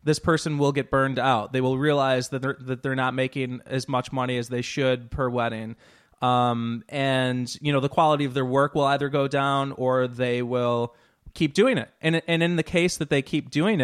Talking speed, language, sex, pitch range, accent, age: 220 wpm, English, male, 120-140 Hz, American, 20-39